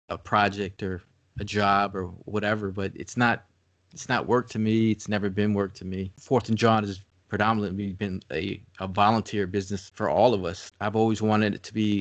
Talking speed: 205 wpm